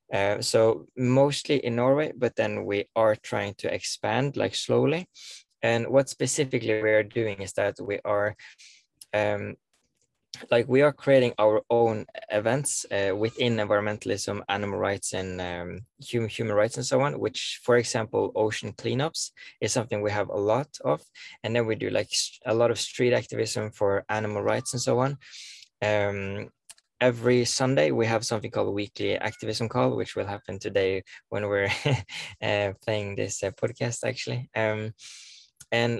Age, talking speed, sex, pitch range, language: 20-39, 165 wpm, male, 105-125 Hz, English